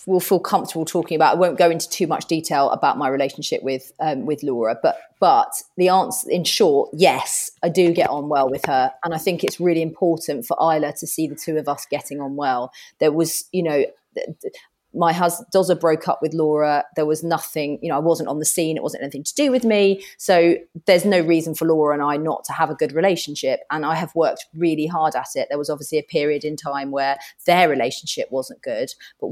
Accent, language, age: British, English, 30-49